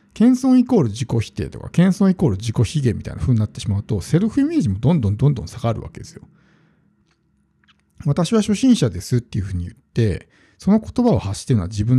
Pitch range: 110-170 Hz